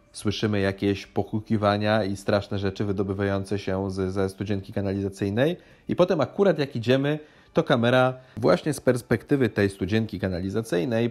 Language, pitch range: Polish, 110-130 Hz